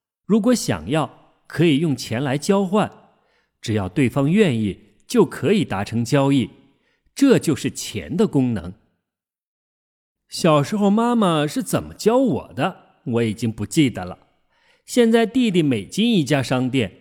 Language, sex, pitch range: Chinese, male, 115-190 Hz